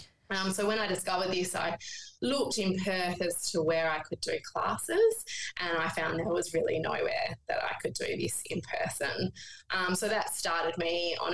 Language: English